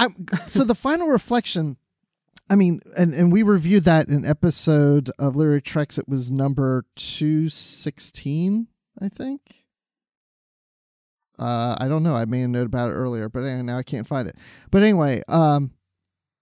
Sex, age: male, 40-59